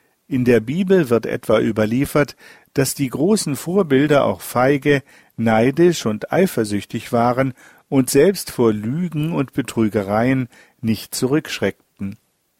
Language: German